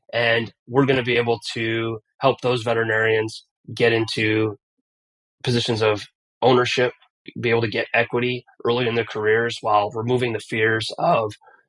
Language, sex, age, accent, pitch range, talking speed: English, male, 20-39, American, 110-120 Hz, 150 wpm